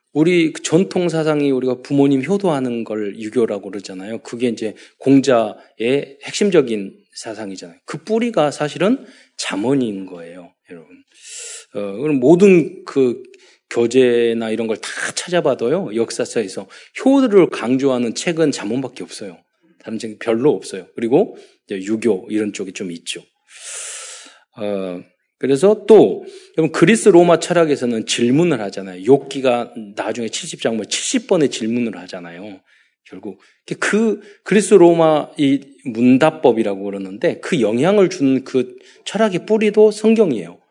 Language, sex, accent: Korean, male, native